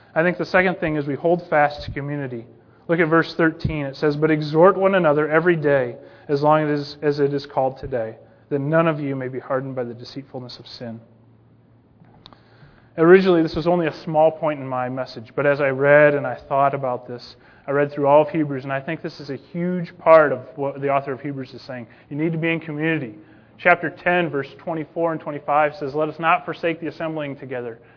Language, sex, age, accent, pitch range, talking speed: English, male, 30-49, American, 125-160 Hz, 220 wpm